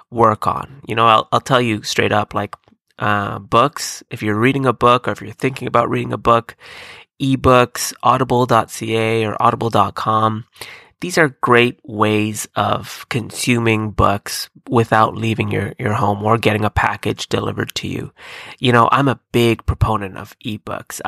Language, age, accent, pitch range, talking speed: English, 20-39, American, 110-135 Hz, 160 wpm